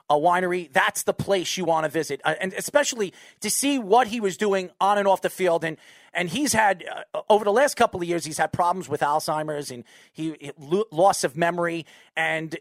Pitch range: 170-225 Hz